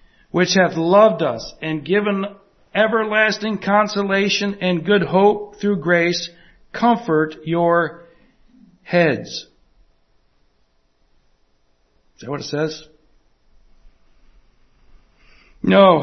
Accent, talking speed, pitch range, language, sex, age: American, 80 wpm, 150-195 Hz, English, male, 60-79